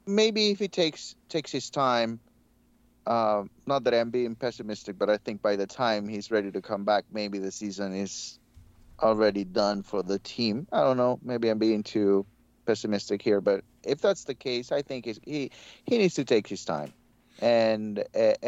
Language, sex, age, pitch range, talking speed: English, male, 30-49, 105-130 Hz, 190 wpm